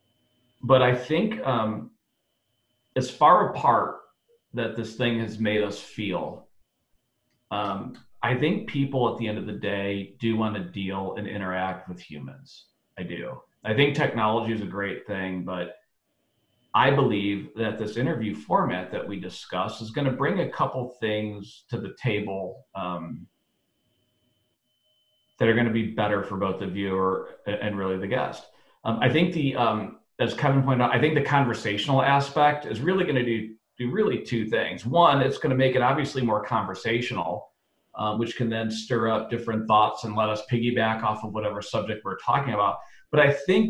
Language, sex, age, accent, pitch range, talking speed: English, male, 40-59, American, 105-125 Hz, 180 wpm